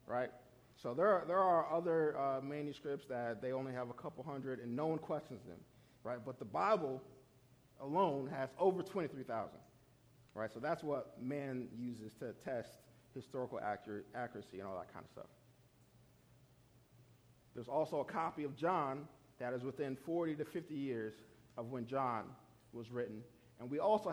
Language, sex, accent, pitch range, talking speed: English, male, American, 120-140 Hz, 170 wpm